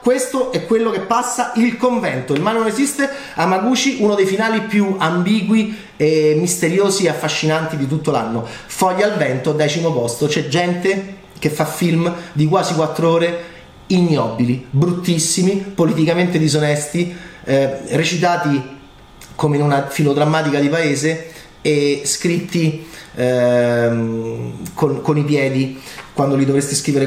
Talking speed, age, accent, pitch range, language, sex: 135 wpm, 30-49, native, 135-195 Hz, Italian, male